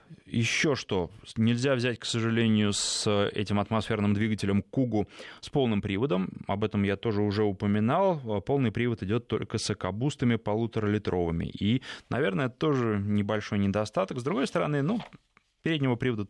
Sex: male